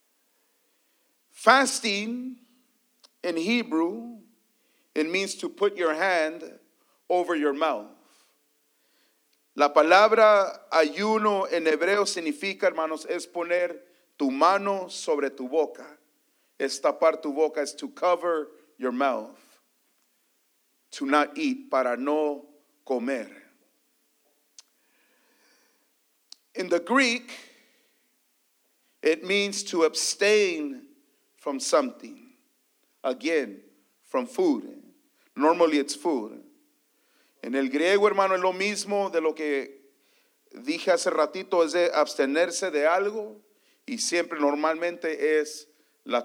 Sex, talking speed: male, 100 wpm